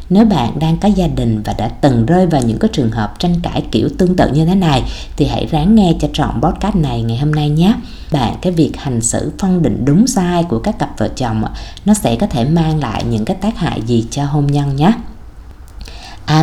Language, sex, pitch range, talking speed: Vietnamese, female, 125-180 Hz, 235 wpm